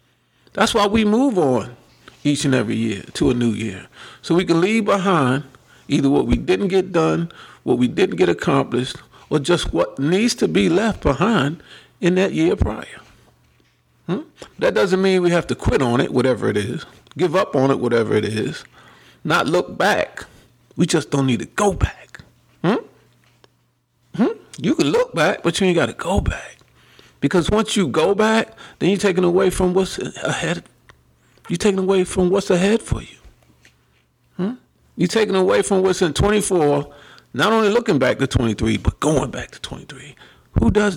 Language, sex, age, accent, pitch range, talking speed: English, male, 40-59, American, 130-200 Hz, 185 wpm